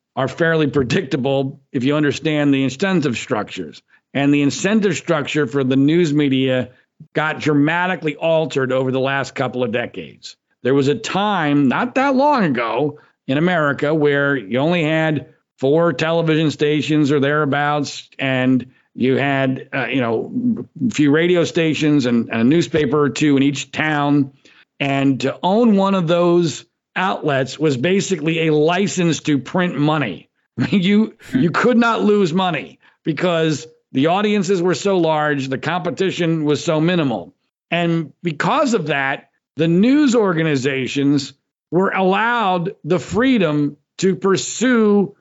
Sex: male